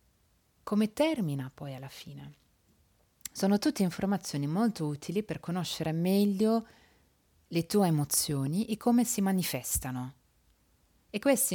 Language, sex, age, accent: Italian, female, 30-49, native